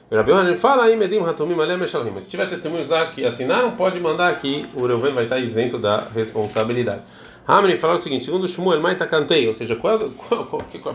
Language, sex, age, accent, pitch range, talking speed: Portuguese, male, 30-49, Brazilian, 115-180 Hz, 260 wpm